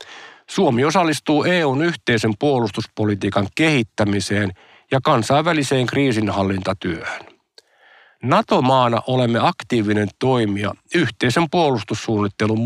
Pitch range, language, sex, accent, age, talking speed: 105-145 Hz, Finnish, male, native, 50-69, 70 wpm